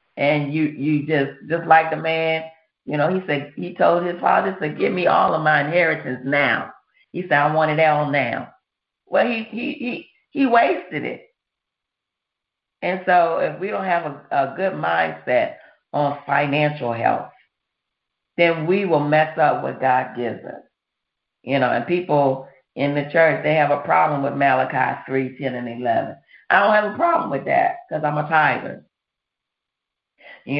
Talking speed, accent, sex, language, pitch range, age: 175 wpm, American, female, English, 145-210 Hz, 40-59